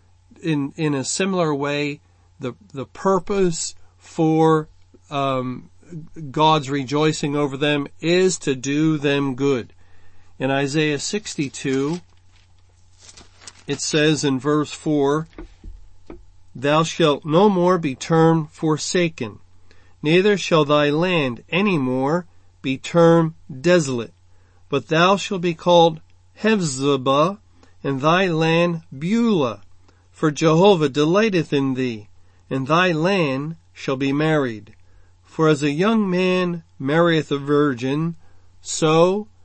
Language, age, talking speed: English, 50-69, 110 wpm